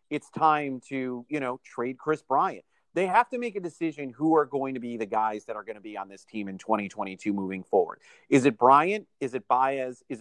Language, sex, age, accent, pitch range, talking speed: English, male, 40-59, American, 120-175 Hz, 235 wpm